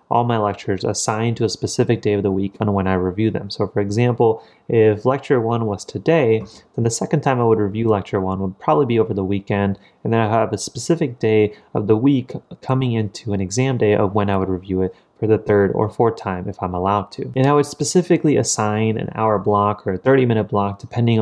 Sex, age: male, 30-49